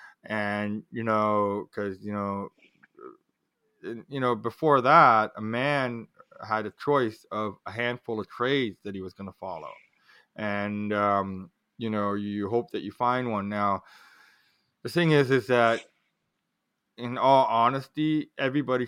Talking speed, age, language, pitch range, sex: 145 wpm, 20-39, English, 105-130 Hz, male